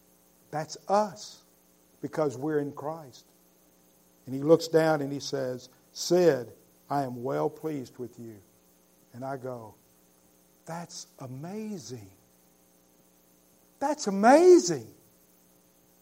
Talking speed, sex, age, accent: 100 wpm, male, 50-69, American